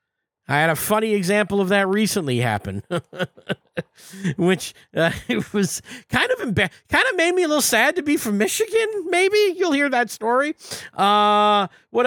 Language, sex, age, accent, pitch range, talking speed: English, male, 40-59, American, 150-210 Hz, 170 wpm